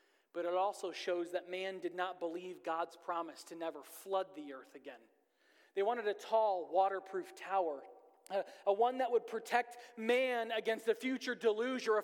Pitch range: 185-245 Hz